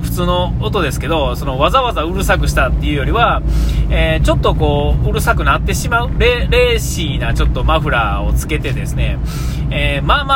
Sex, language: male, Japanese